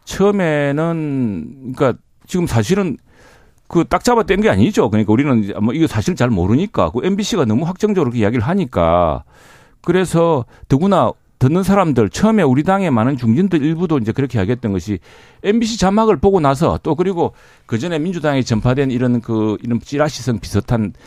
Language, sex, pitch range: Korean, male, 110-155 Hz